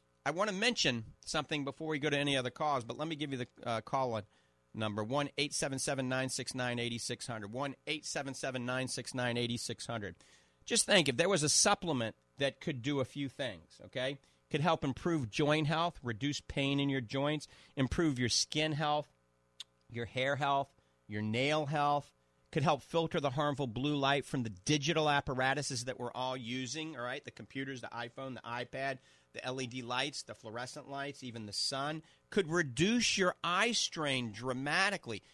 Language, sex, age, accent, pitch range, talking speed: English, male, 40-59, American, 120-150 Hz, 170 wpm